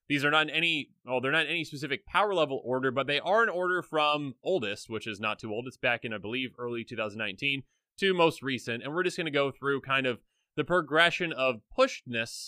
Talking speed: 235 wpm